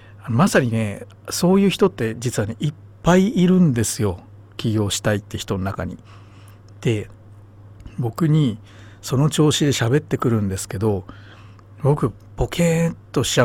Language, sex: Japanese, male